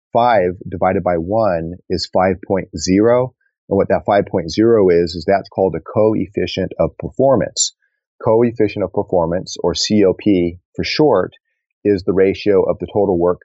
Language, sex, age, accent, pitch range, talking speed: English, male, 30-49, American, 90-105 Hz, 145 wpm